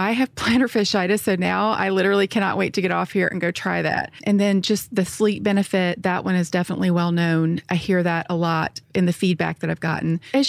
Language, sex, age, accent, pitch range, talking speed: English, female, 40-59, American, 175-205 Hz, 240 wpm